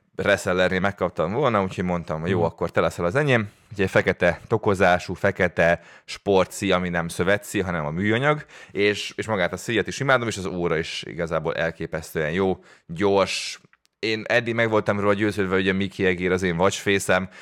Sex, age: male, 20-39